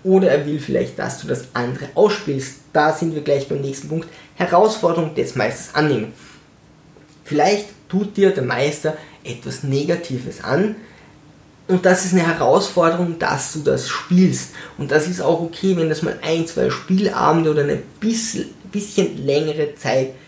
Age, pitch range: 20-39, 145-175 Hz